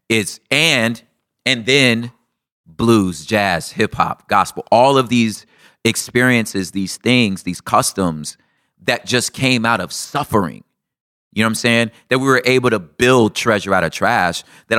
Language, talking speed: English, 160 wpm